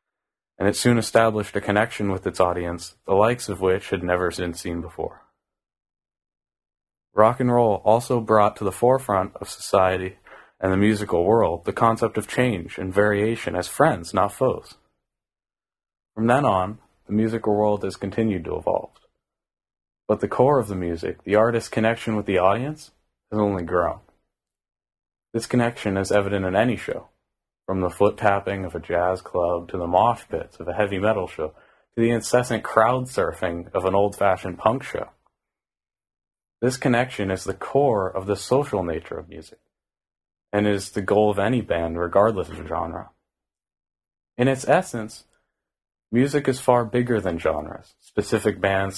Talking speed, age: 160 wpm, 30-49